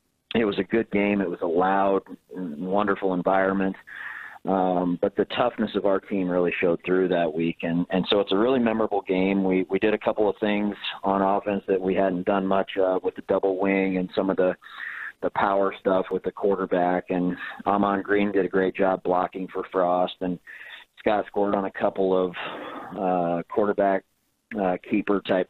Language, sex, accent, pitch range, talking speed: English, male, American, 90-100 Hz, 190 wpm